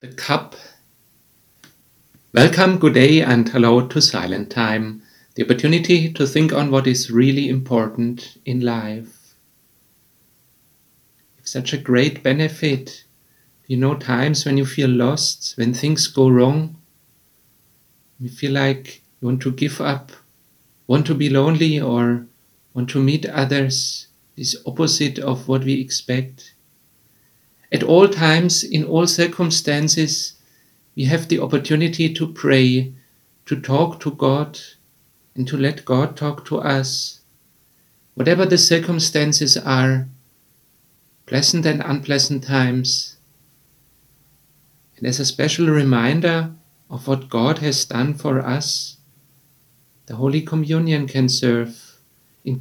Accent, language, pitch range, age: German, English, 130-150 Hz, 50-69